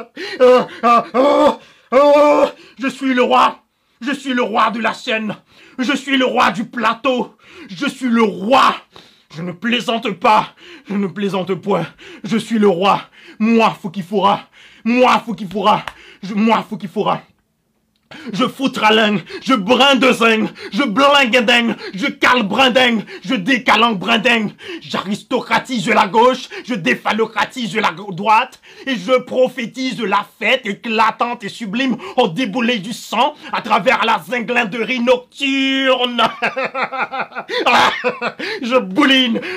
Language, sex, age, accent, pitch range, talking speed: French, male, 30-49, French, 215-260 Hz, 140 wpm